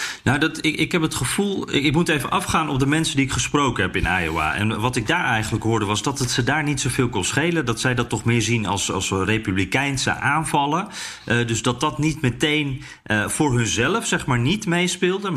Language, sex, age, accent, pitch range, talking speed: Dutch, male, 40-59, Dutch, 110-155 Hz, 225 wpm